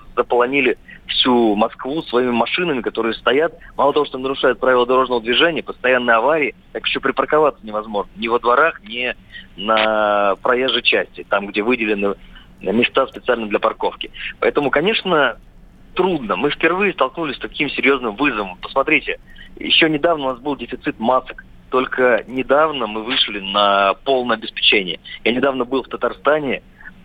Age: 30-49